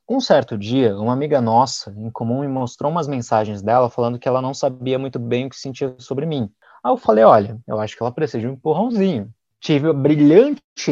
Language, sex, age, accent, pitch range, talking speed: Portuguese, male, 20-39, Brazilian, 115-150 Hz, 220 wpm